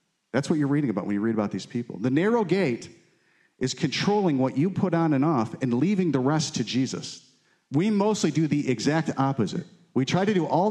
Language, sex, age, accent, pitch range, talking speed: English, male, 40-59, American, 135-185 Hz, 220 wpm